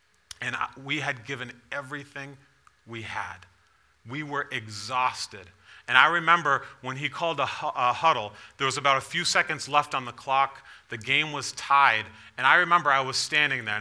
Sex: male